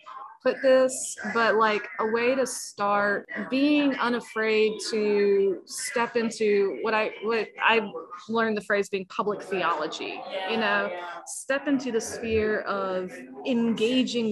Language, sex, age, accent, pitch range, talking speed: English, female, 20-39, American, 200-235 Hz, 130 wpm